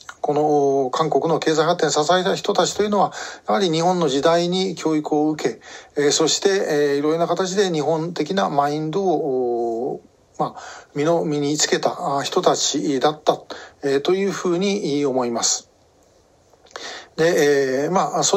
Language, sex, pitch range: Japanese, male, 145-185 Hz